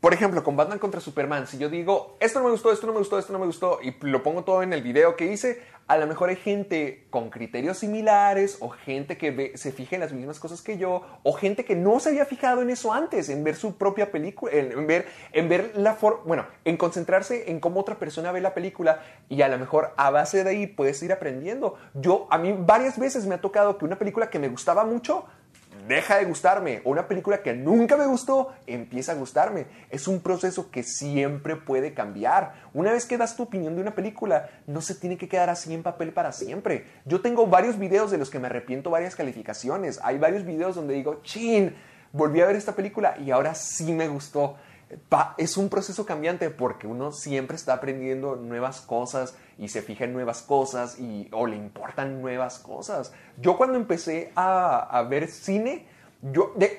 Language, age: Spanish, 30-49